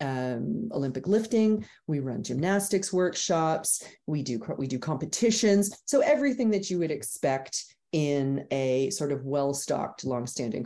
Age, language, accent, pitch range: 40-59, English, American, 135-170 Hz